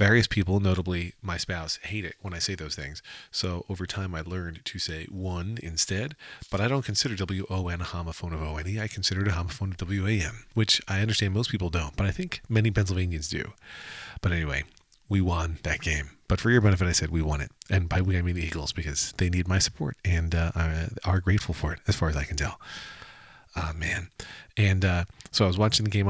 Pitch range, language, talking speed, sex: 80-105 Hz, English, 230 wpm, male